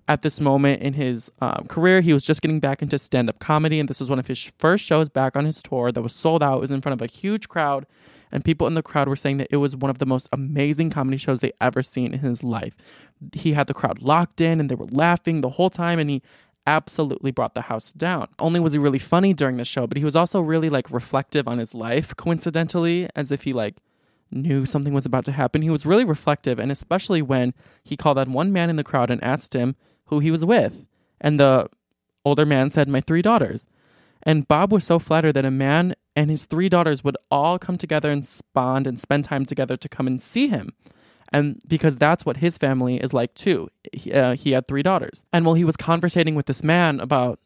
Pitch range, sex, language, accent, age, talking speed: 130-160 Hz, male, English, American, 20-39, 245 wpm